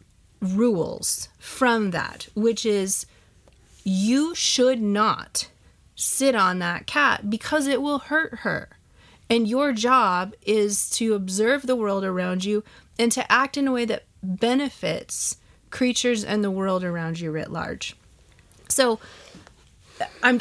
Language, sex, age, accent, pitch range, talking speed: English, female, 30-49, American, 185-240 Hz, 130 wpm